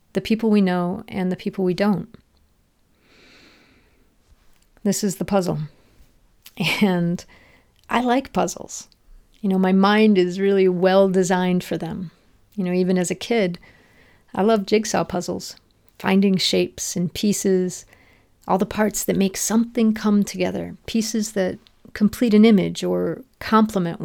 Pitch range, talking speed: 175-205 Hz, 140 wpm